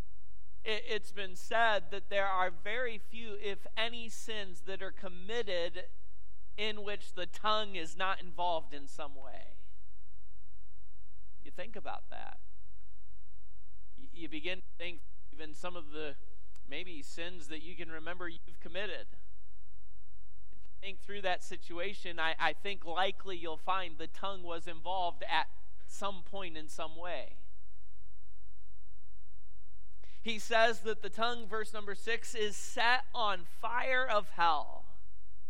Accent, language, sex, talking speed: American, English, male, 130 wpm